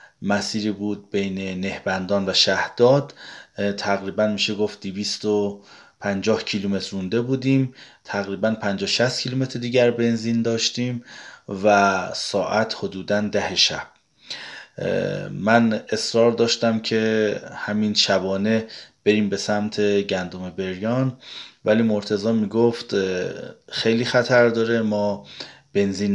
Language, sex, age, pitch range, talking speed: Persian, male, 30-49, 100-120 Hz, 95 wpm